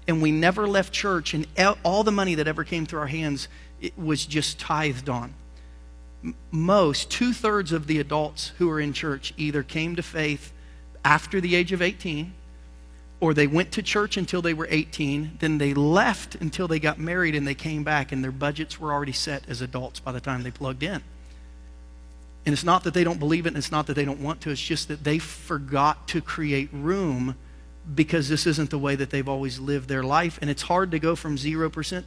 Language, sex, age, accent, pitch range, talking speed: English, male, 40-59, American, 140-170 Hz, 210 wpm